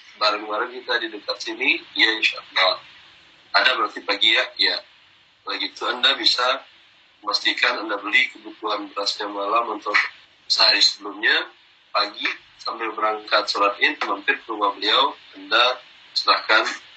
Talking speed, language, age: 130 wpm, Indonesian, 40-59